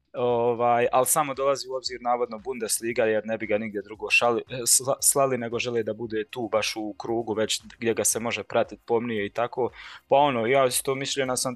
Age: 20-39